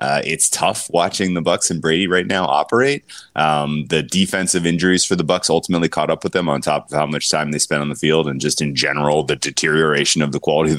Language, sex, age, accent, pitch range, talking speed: English, male, 20-39, American, 75-80 Hz, 245 wpm